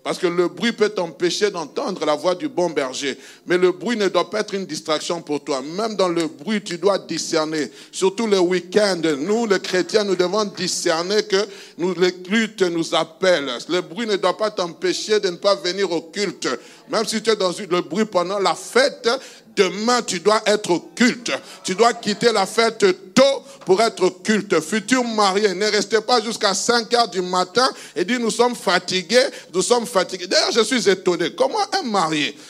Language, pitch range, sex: French, 180-230 Hz, male